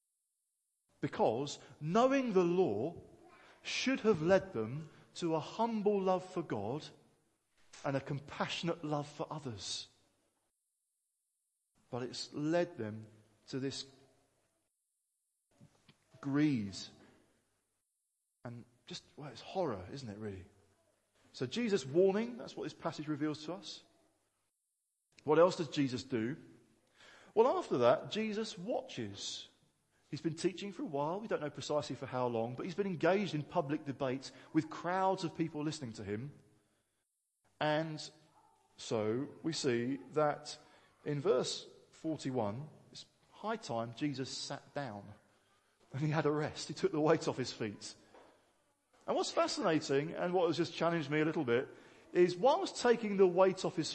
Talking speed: 140 wpm